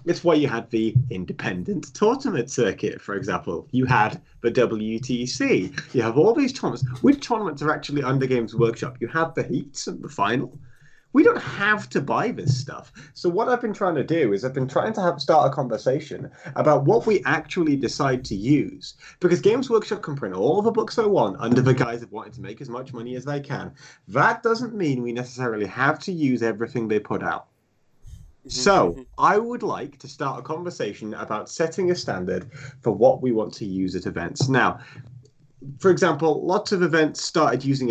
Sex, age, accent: male, 30-49, British